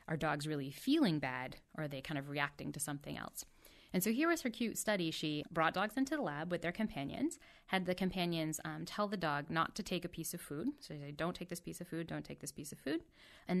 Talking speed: 260 wpm